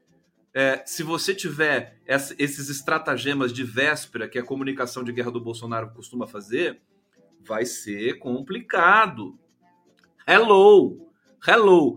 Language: Portuguese